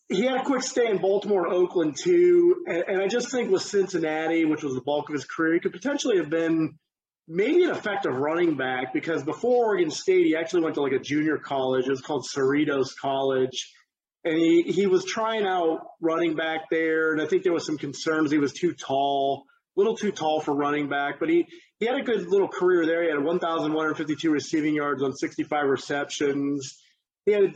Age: 30-49